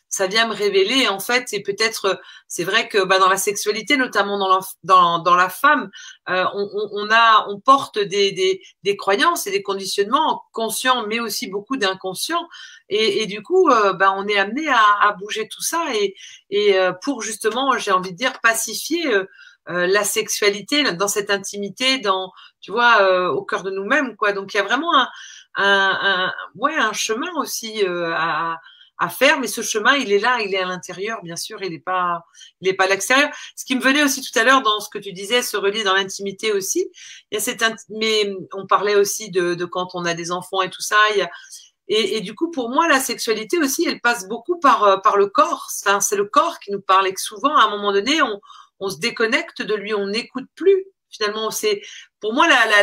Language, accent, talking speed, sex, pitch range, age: French, French, 230 wpm, female, 200-280 Hz, 40-59